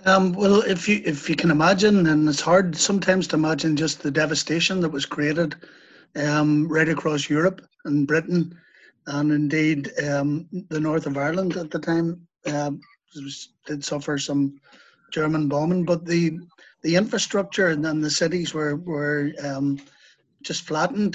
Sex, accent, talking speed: male, Irish, 160 wpm